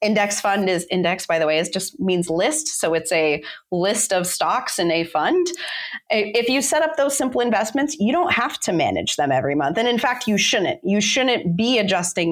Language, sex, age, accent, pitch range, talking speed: English, female, 30-49, American, 170-225 Hz, 215 wpm